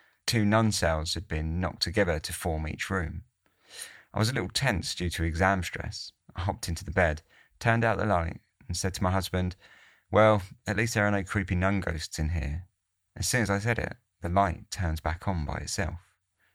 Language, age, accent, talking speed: English, 30-49, British, 210 wpm